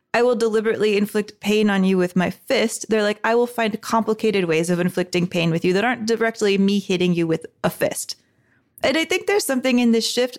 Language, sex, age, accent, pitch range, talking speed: English, female, 20-39, American, 195-235 Hz, 225 wpm